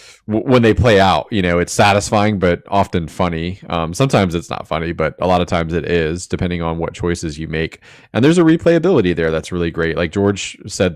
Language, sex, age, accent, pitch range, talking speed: English, male, 30-49, American, 85-100 Hz, 220 wpm